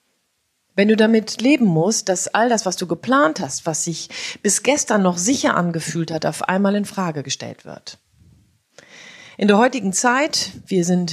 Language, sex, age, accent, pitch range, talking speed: German, female, 40-59, German, 155-205 Hz, 175 wpm